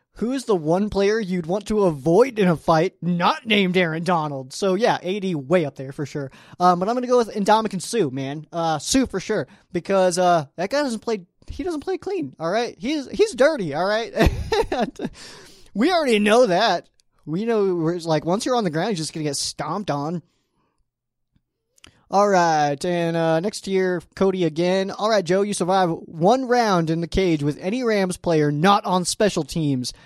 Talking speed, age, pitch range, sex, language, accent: 200 wpm, 20-39, 155-210 Hz, male, English, American